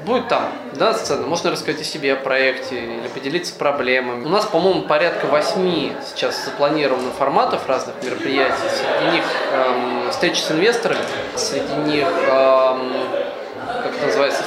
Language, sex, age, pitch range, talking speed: Russian, male, 20-39, 130-150 Hz, 140 wpm